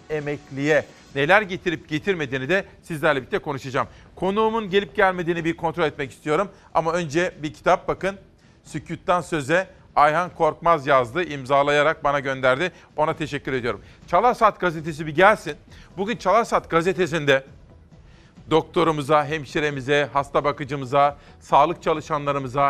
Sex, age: male, 40-59